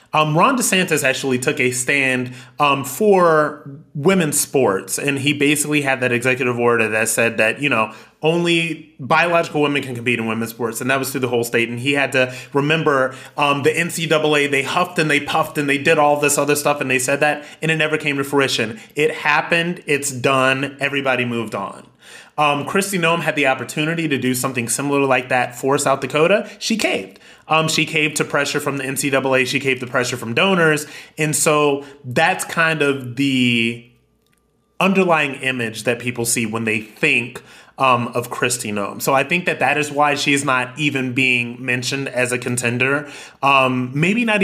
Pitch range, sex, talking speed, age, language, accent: 125-155 Hz, male, 195 wpm, 30-49, English, American